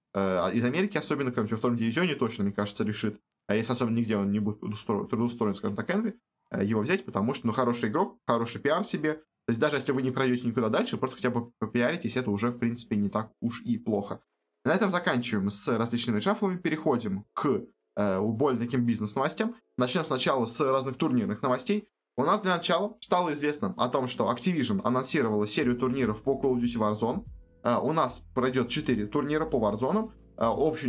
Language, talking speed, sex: Russian, 190 wpm, male